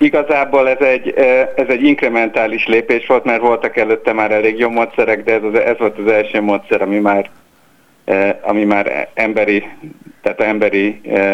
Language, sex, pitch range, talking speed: Hungarian, male, 105-125 Hz, 140 wpm